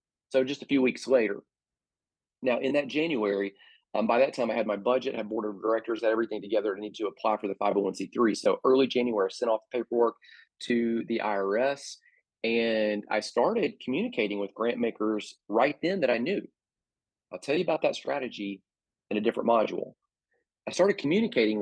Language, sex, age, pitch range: English, male, 30-49, 110-140 Hz